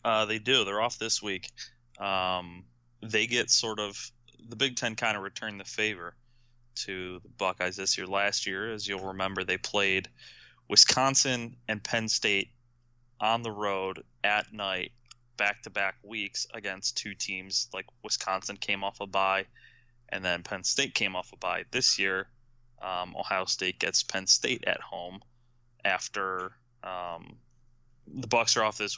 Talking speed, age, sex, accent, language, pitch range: 165 wpm, 20-39, male, American, English, 95-115 Hz